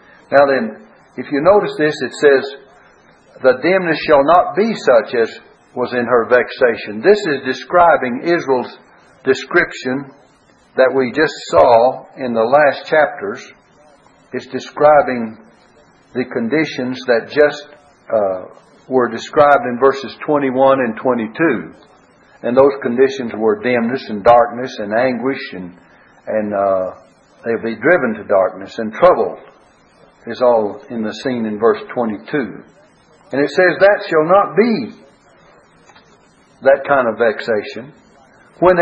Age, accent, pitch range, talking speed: 60-79, American, 120-150 Hz, 135 wpm